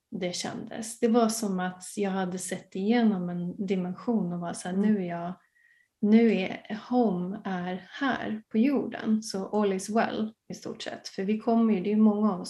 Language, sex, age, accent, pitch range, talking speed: Swedish, female, 30-49, native, 185-230 Hz, 200 wpm